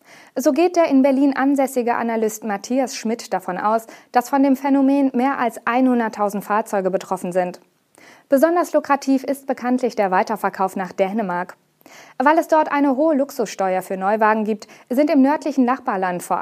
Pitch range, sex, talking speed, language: 190-270 Hz, female, 155 wpm, German